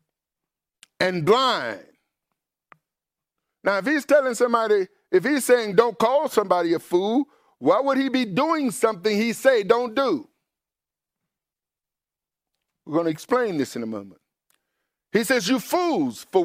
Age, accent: 50-69, American